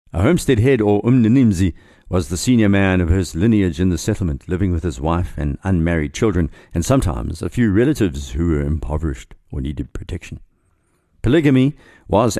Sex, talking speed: male, 170 wpm